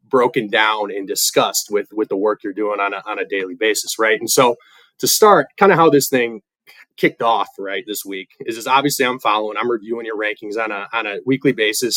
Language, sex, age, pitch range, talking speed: English, male, 20-39, 115-190 Hz, 225 wpm